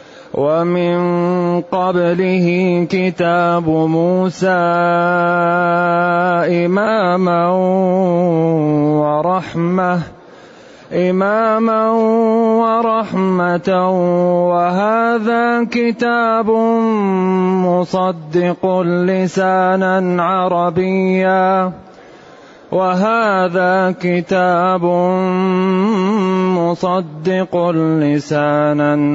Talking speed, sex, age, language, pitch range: 35 wpm, male, 30-49, Arabic, 170-185 Hz